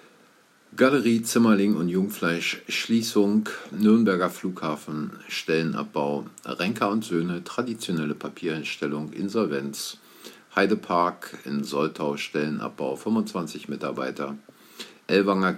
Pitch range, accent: 75-100 Hz, German